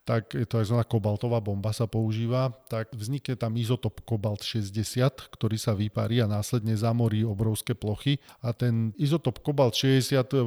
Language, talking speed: Slovak, 160 wpm